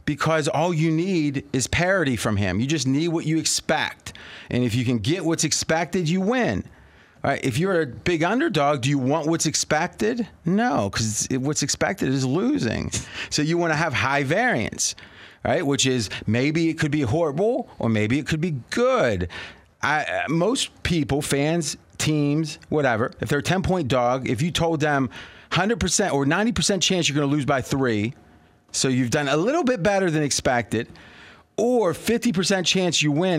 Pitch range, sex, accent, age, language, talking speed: 125-170 Hz, male, American, 30-49, English, 180 wpm